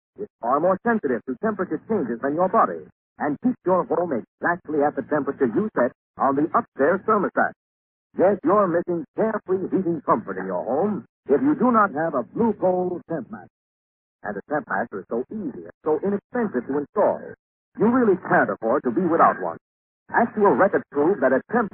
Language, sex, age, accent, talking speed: English, male, 60-79, American, 190 wpm